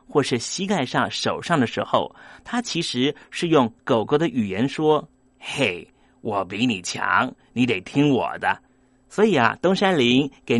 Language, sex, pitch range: Chinese, male, 120-170 Hz